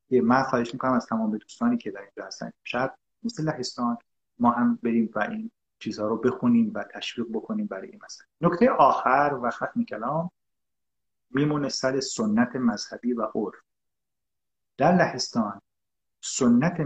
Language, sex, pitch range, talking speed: Persian, male, 110-180 Hz, 145 wpm